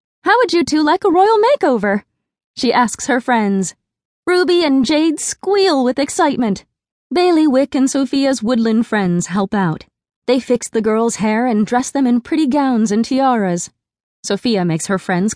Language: English